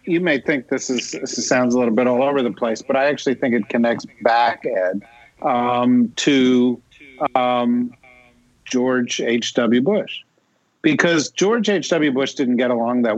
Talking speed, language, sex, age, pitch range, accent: 165 wpm, English, male, 50-69, 115-140 Hz, American